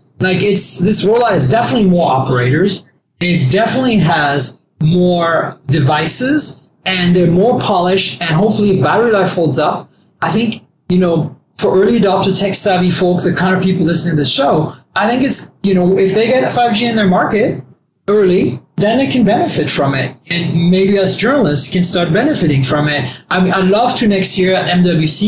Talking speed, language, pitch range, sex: 190 wpm, English, 155-195 Hz, male